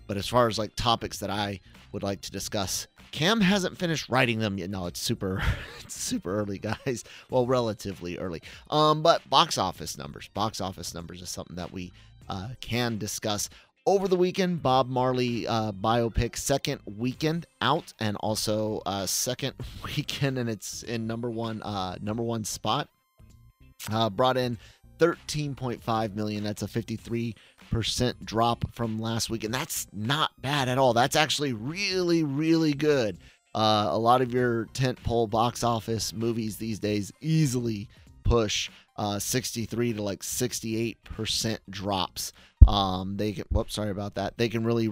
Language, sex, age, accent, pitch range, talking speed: English, male, 30-49, American, 100-125 Hz, 160 wpm